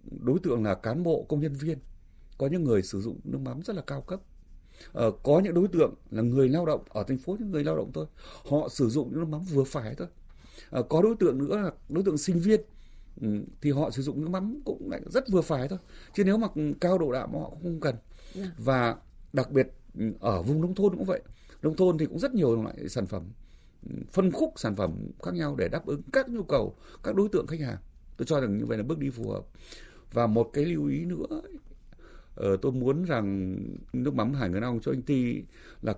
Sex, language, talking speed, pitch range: male, Vietnamese, 230 wpm, 105-175 Hz